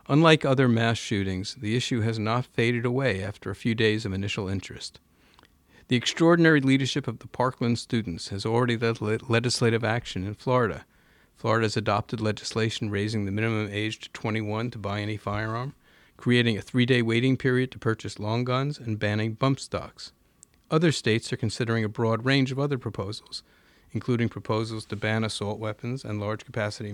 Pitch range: 110-130 Hz